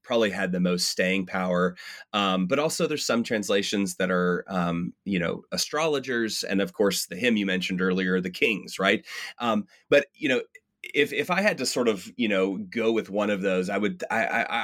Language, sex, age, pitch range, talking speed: English, male, 30-49, 90-110 Hz, 205 wpm